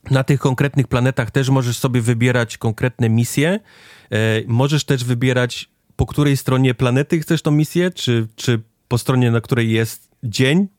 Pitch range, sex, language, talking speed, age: 105-130 Hz, male, Polish, 155 wpm, 30-49